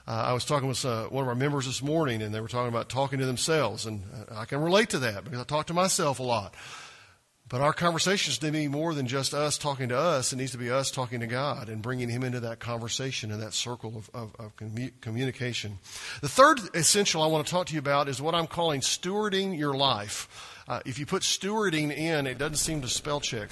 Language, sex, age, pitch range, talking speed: English, male, 50-69, 120-165 Hz, 245 wpm